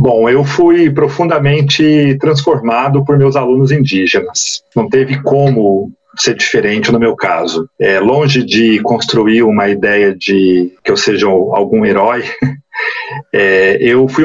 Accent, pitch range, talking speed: Brazilian, 115-145 Hz, 135 wpm